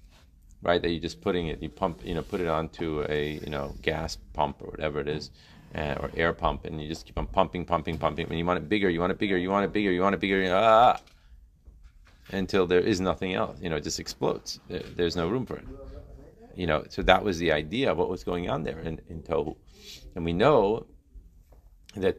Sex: male